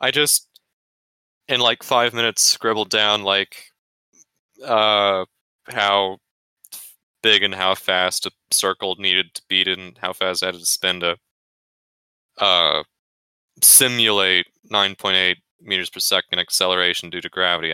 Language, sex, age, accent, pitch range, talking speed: English, male, 20-39, American, 95-145 Hz, 130 wpm